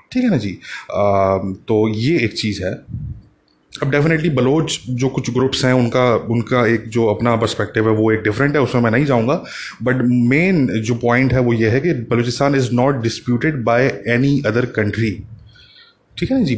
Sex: male